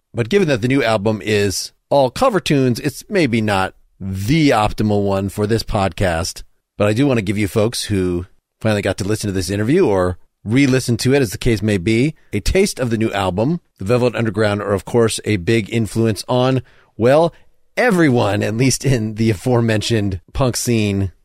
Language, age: English, 30-49